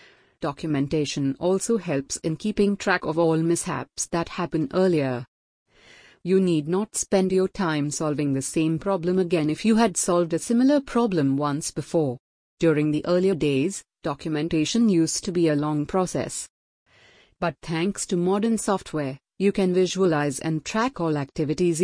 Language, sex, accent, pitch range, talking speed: English, female, Indian, 155-195 Hz, 150 wpm